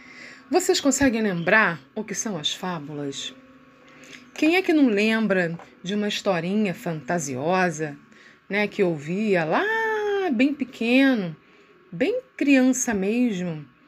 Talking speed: 110 wpm